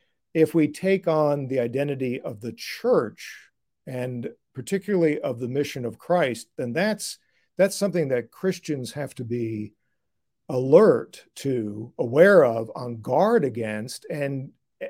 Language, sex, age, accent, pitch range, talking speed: English, male, 50-69, American, 125-165 Hz, 135 wpm